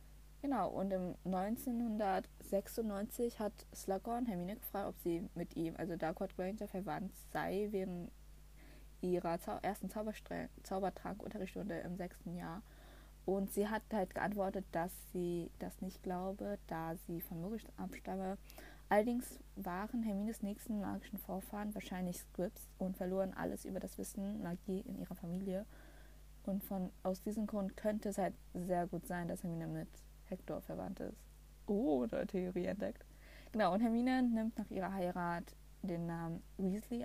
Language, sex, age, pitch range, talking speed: German, female, 20-39, 180-210 Hz, 145 wpm